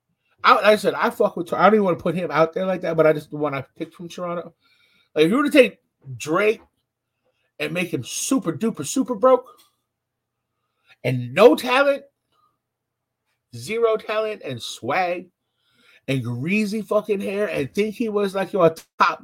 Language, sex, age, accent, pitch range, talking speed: English, male, 30-49, American, 150-230 Hz, 185 wpm